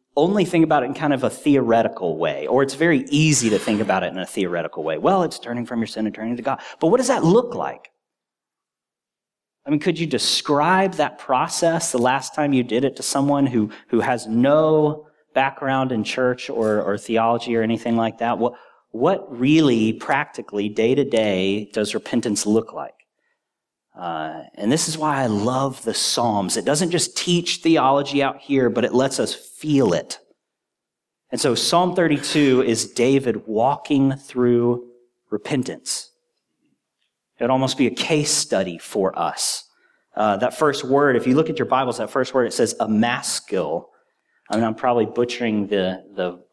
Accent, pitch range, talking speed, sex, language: American, 115-150 Hz, 180 wpm, male, English